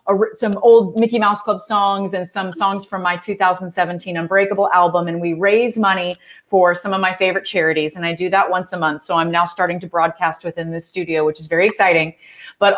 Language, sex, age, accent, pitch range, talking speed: English, female, 30-49, American, 175-210 Hz, 210 wpm